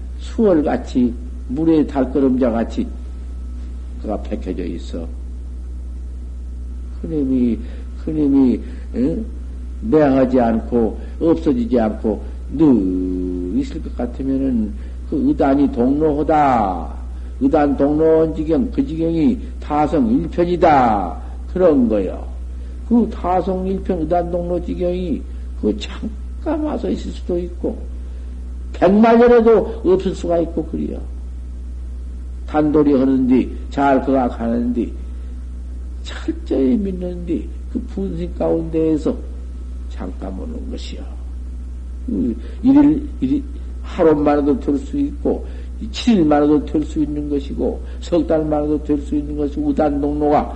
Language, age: Korean, 60-79